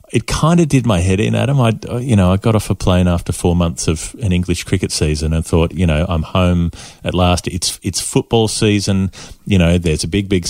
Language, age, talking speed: English, 30-49, 240 wpm